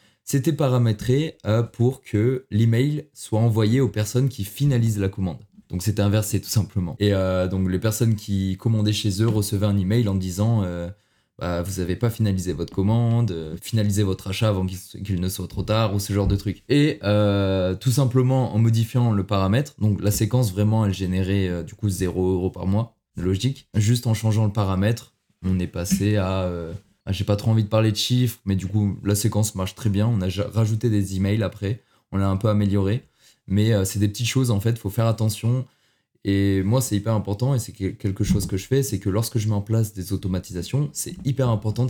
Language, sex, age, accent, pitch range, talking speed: French, male, 20-39, French, 100-115 Hz, 220 wpm